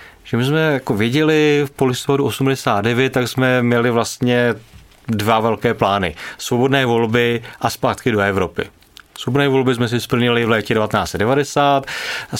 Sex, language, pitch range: male, Czech, 120-155 Hz